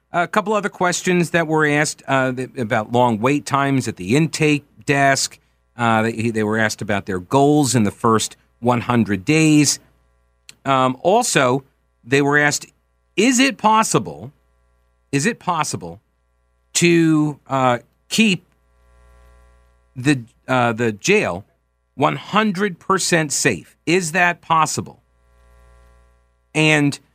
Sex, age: male, 50-69